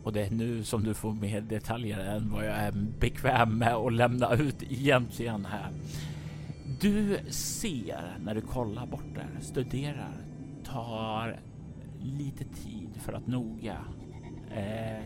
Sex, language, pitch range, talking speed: male, Swedish, 105-125 Hz, 145 wpm